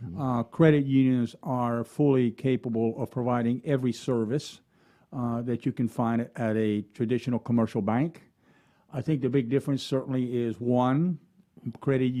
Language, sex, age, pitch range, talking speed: English, male, 50-69, 115-140 Hz, 145 wpm